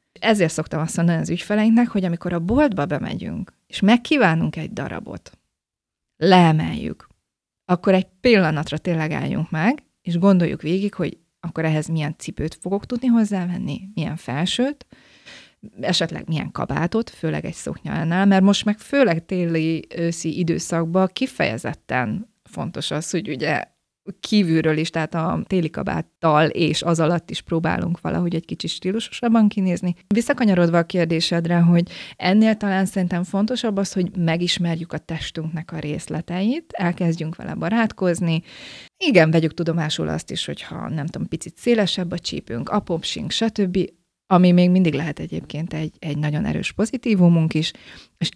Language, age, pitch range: Hungarian, 30-49, 160-200 Hz